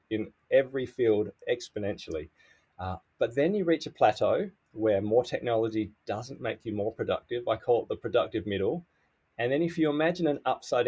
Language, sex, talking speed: English, male, 175 wpm